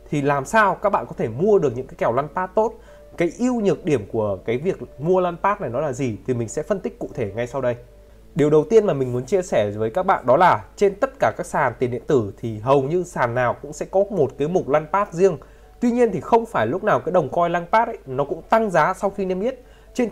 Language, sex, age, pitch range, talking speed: Vietnamese, male, 20-39, 130-195 Hz, 270 wpm